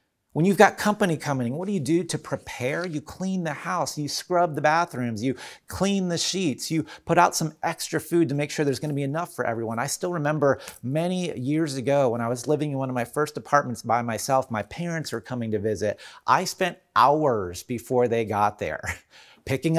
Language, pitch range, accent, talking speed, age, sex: English, 120-165 Hz, American, 210 wpm, 30-49, male